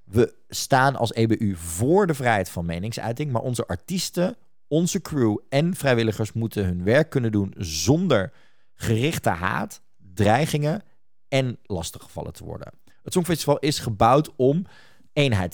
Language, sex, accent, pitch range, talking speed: Dutch, male, Dutch, 100-150 Hz, 135 wpm